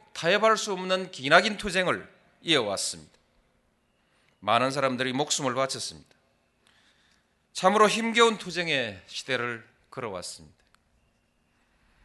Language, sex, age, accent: Korean, male, 40-59, native